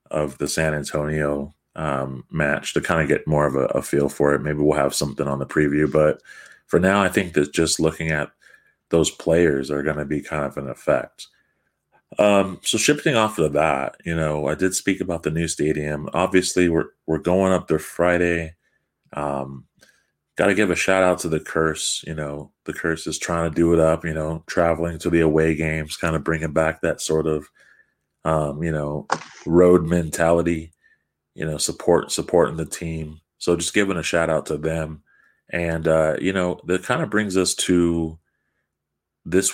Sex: male